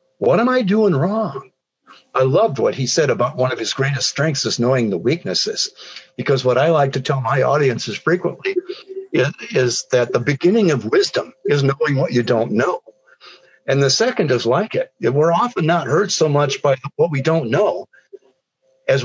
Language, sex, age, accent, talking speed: English, male, 60-79, American, 190 wpm